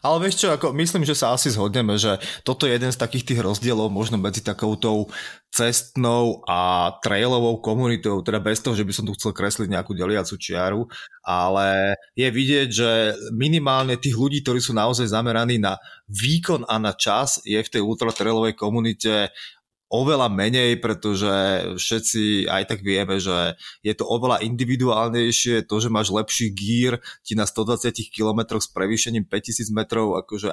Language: Slovak